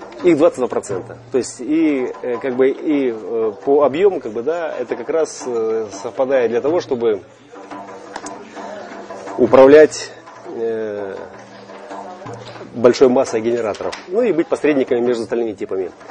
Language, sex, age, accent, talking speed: Russian, male, 30-49, native, 115 wpm